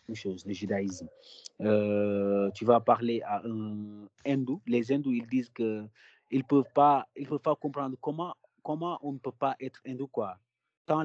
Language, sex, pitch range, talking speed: French, male, 100-125 Hz, 170 wpm